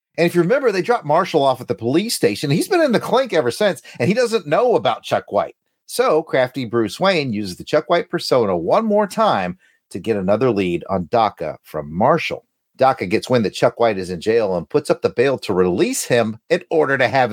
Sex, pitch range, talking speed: male, 115-180 Hz, 230 wpm